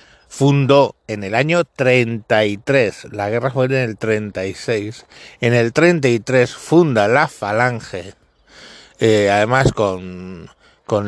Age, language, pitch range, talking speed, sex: 60-79, Spanish, 110-140 Hz, 115 wpm, male